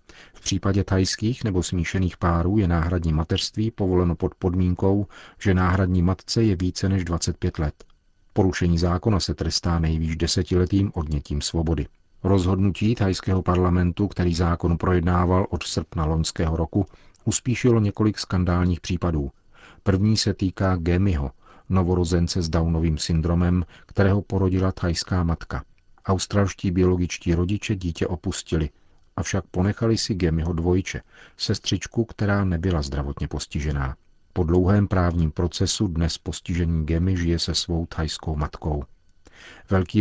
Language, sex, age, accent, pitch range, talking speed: Czech, male, 40-59, native, 85-95 Hz, 125 wpm